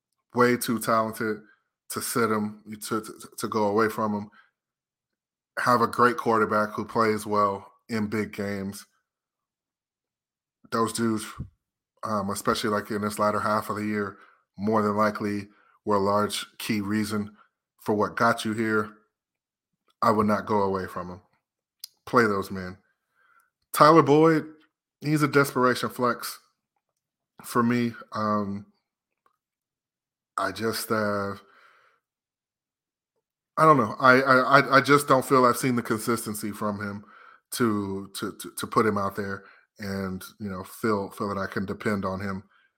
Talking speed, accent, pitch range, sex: 145 wpm, American, 100-115 Hz, male